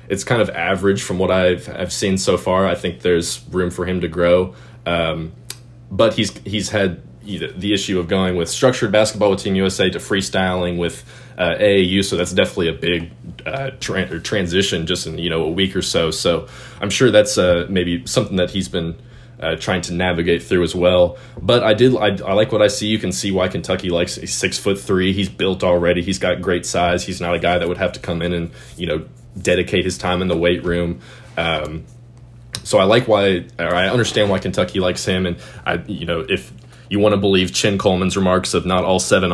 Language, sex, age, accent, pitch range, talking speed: English, male, 20-39, American, 85-100 Hz, 225 wpm